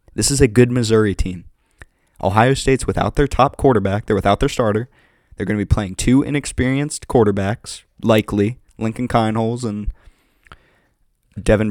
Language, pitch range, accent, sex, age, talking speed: English, 95-120 Hz, American, male, 20-39, 150 wpm